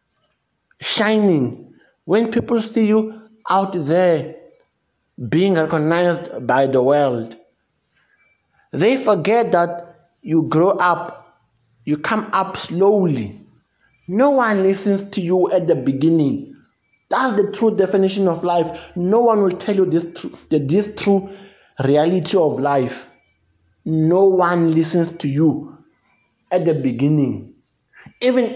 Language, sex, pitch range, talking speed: English, male, 160-200 Hz, 120 wpm